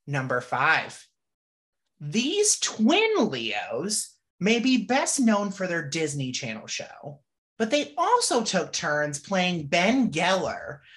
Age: 30-49